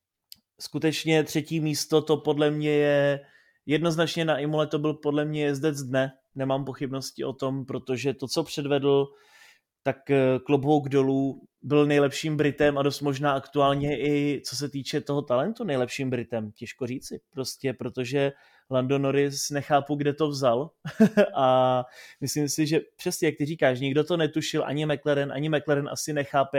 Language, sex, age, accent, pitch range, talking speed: Czech, male, 20-39, native, 130-145 Hz, 155 wpm